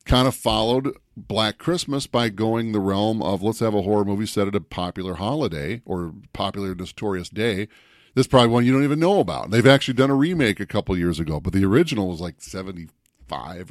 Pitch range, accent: 95-140 Hz, American